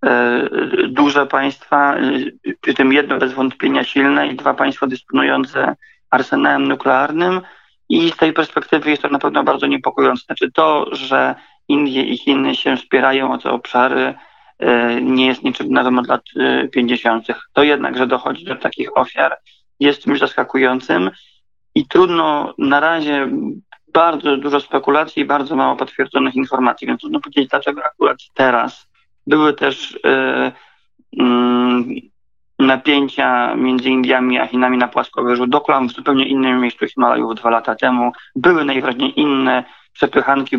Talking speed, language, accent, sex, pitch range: 140 wpm, Polish, native, male, 125-150 Hz